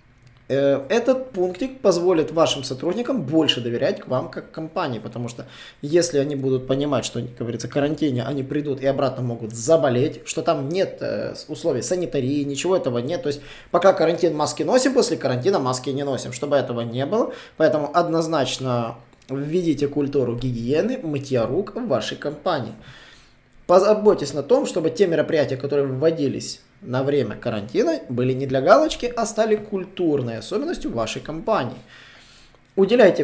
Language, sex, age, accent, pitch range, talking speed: Russian, male, 20-39, native, 125-175 Hz, 145 wpm